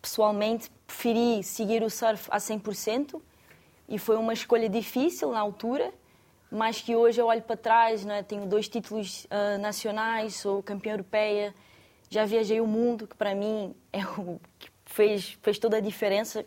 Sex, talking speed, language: female, 170 wpm, Portuguese